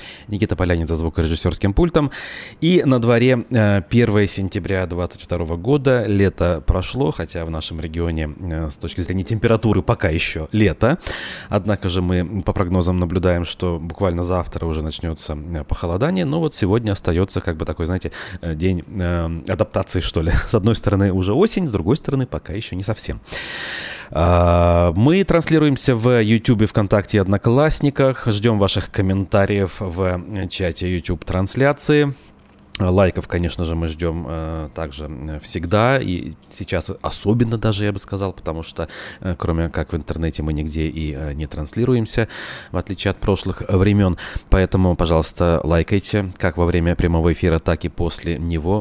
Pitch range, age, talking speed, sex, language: 85-105 Hz, 20-39, 145 wpm, male, Russian